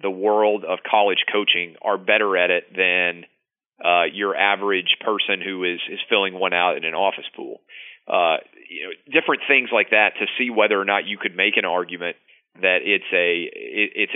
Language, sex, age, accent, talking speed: English, male, 30-49, American, 195 wpm